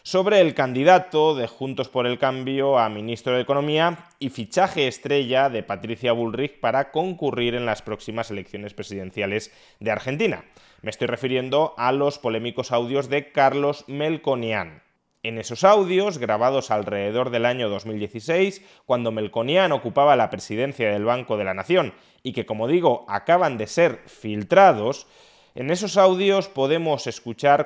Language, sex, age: Spanish, male, 20-39